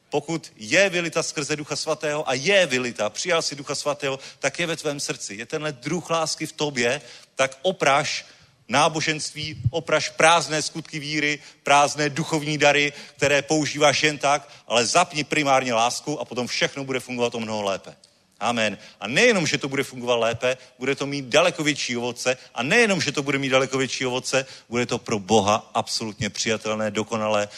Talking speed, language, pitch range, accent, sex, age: 175 wpm, Czech, 110-150 Hz, native, male, 40-59